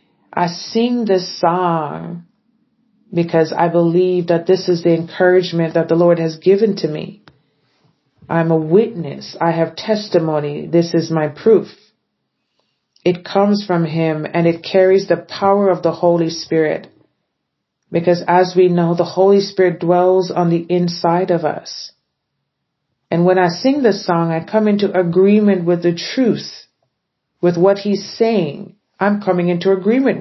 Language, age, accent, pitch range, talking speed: English, 40-59, American, 170-195 Hz, 150 wpm